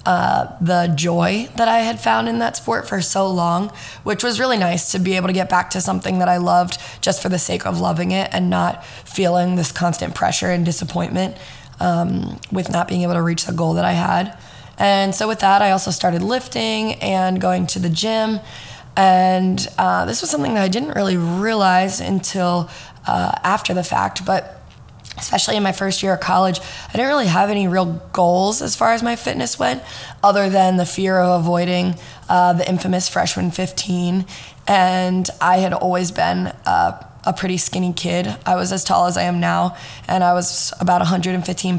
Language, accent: English, American